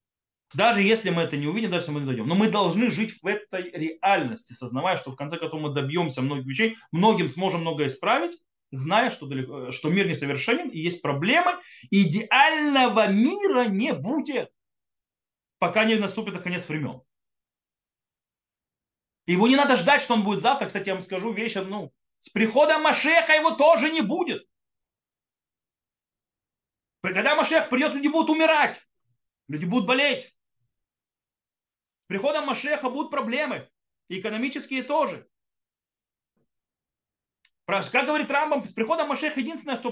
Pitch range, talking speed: 175-260 Hz, 140 wpm